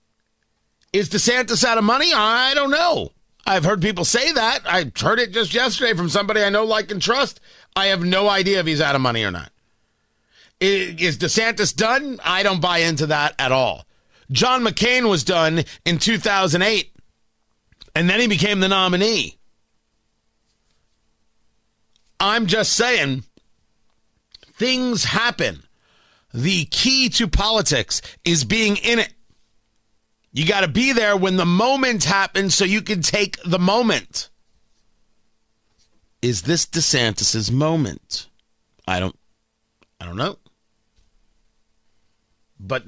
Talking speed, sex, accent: 135 wpm, male, American